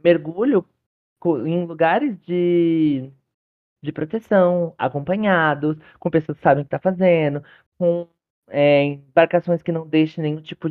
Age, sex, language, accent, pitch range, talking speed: 20-39, male, Portuguese, Brazilian, 140-175 Hz, 130 wpm